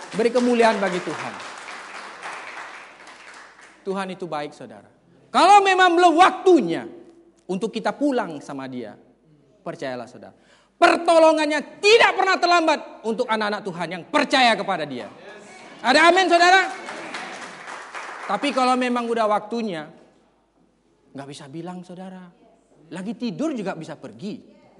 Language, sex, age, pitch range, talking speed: Indonesian, male, 40-59, 185-290 Hz, 115 wpm